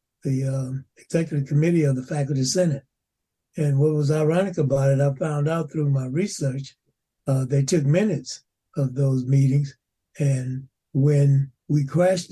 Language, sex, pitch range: English, male, 135-155 Hz